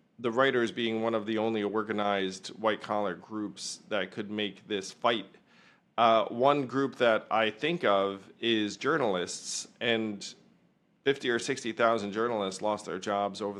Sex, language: male, English